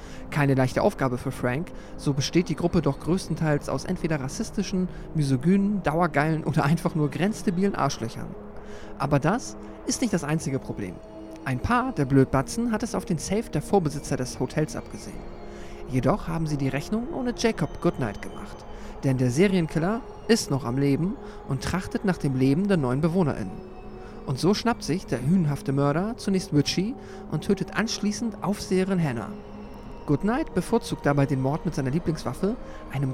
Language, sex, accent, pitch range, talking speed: German, male, German, 135-190 Hz, 160 wpm